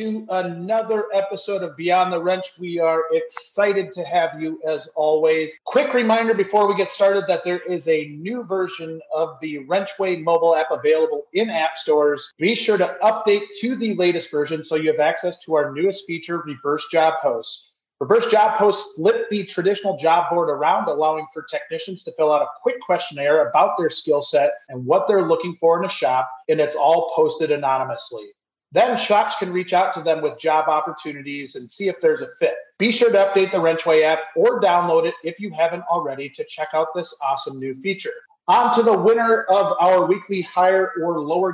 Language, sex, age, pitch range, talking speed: English, male, 30-49, 155-205 Hz, 195 wpm